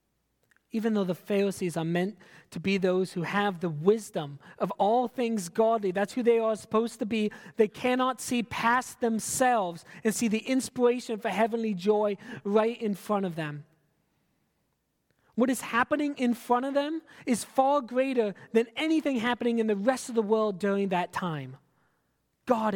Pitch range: 160-230 Hz